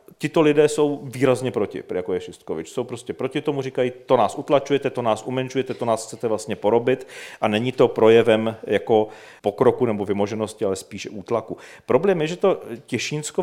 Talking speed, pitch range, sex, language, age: 180 wpm, 135-160 Hz, male, Czech, 40-59